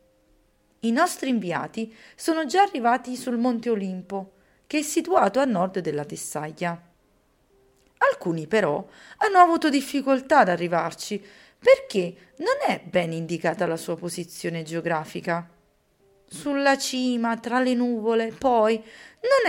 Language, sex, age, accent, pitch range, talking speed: Italian, female, 40-59, native, 175-275 Hz, 120 wpm